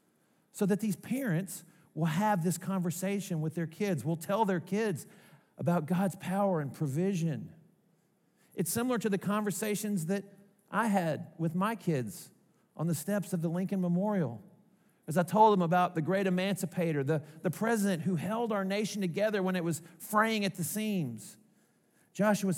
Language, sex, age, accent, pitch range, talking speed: English, male, 50-69, American, 160-195 Hz, 165 wpm